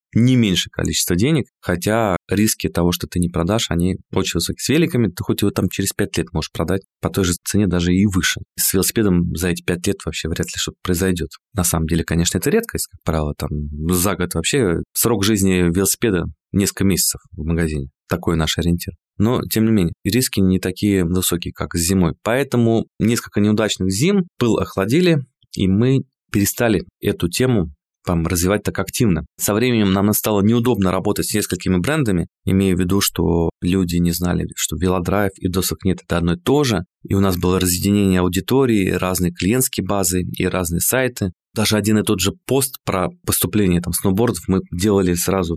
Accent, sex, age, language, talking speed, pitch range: native, male, 20-39, Russian, 185 wpm, 90-105 Hz